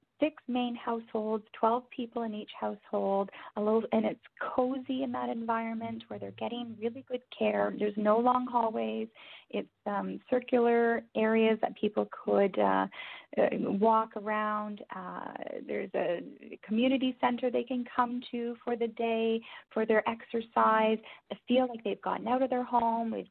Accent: American